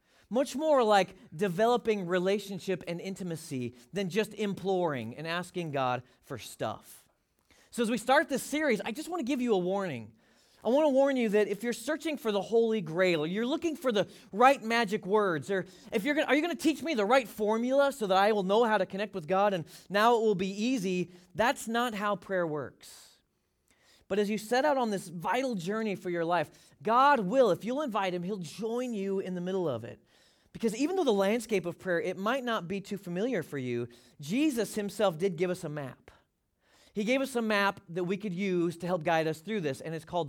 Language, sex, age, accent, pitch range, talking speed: English, male, 30-49, American, 170-225 Hz, 220 wpm